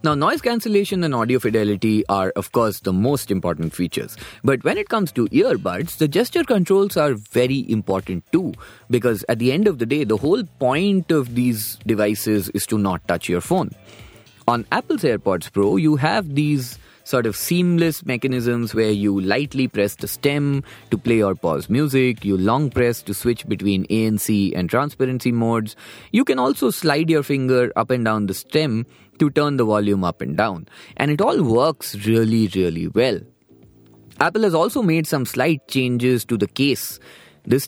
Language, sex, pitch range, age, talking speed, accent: English, male, 105-145 Hz, 30-49, 180 wpm, Indian